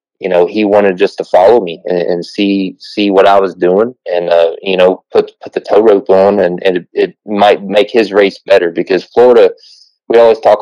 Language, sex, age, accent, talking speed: English, male, 20-39, American, 225 wpm